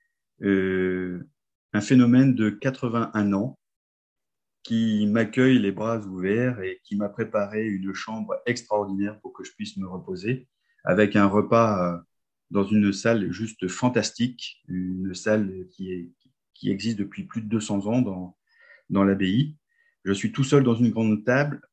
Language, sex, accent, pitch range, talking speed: French, male, French, 100-125 Hz, 150 wpm